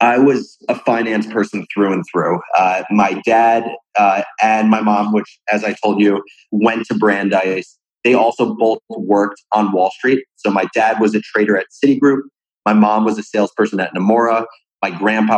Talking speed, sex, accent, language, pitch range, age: 185 wpm, male, American, English, 105-120 Hz, 30-49